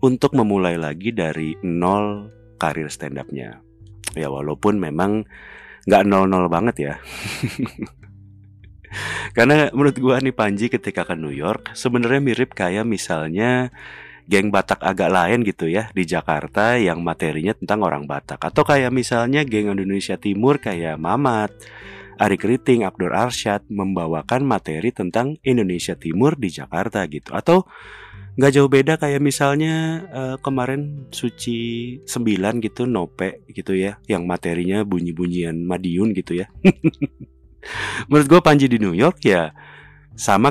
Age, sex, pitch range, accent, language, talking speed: 30-49, male, 90-130 Hz, native, Indonesian, 135 wpm